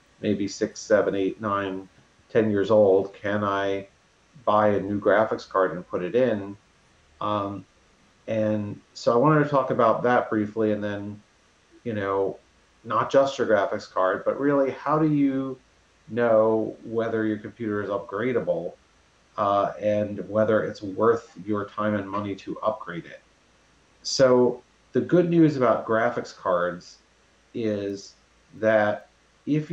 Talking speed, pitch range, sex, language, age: 145 wpm, 100-125 Hz, male, English, 40-59